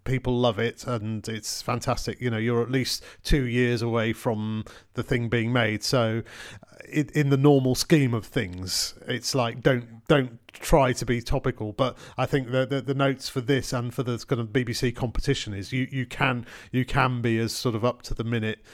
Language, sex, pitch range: English, male, 110-130 Hz